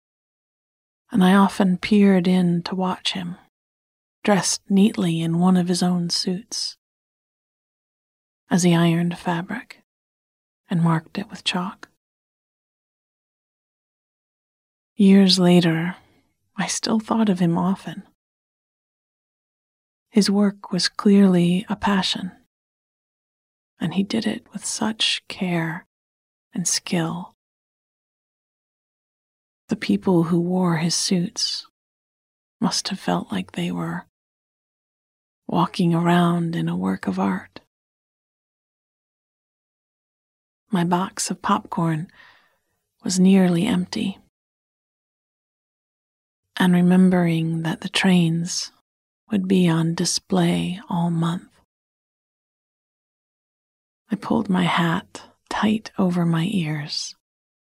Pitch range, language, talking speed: 170-200 Hz, English, 95 wpm